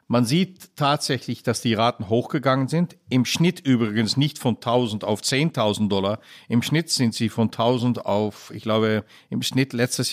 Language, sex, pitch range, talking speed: German, male, 115-140 Hz, 170 wpm